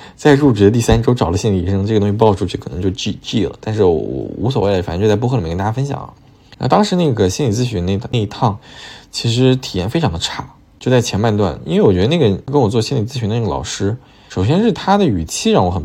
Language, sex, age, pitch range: Chinese, male, 20-39, 95-140 Hz